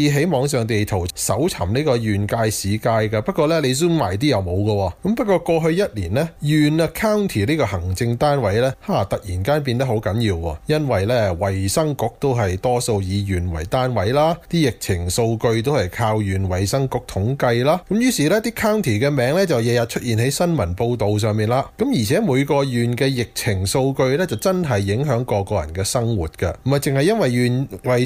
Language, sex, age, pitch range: Chinese, male, 20-39, 105-160 Hz